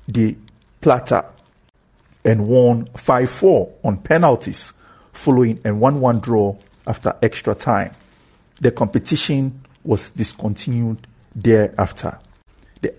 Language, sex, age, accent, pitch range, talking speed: English, male, 50-69, Nigerian, 105-140 Hz, 90 wpm